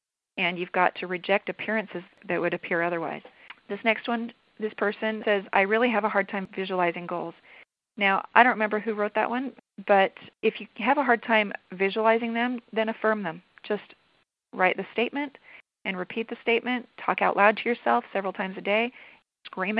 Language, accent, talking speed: English, American, 190 wpm